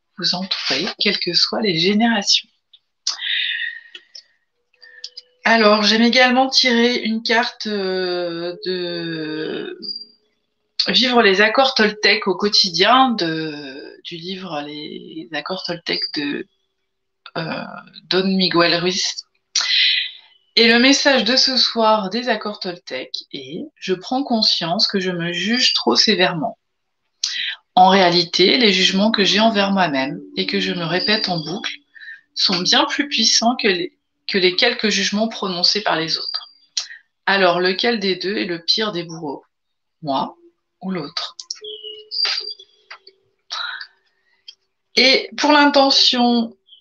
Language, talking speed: French, 125 wpm